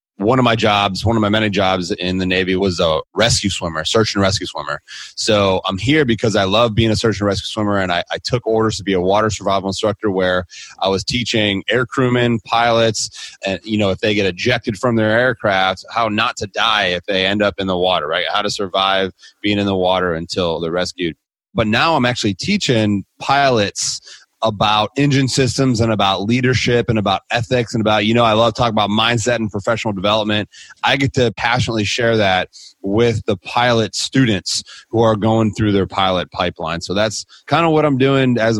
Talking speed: 205 wpm